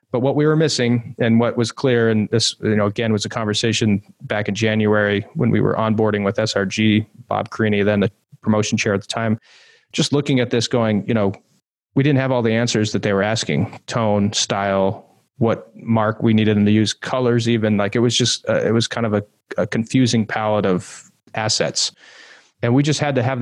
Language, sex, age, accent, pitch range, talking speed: English, male, 30-49, American, 105-125 Hz, 215 wpm